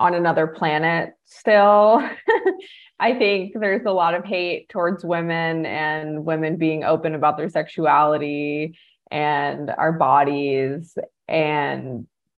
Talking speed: 115 wpm